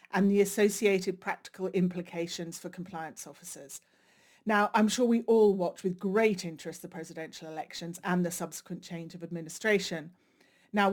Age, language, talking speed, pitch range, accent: 40-59, English, 150 wpm, 170-200 Hz, British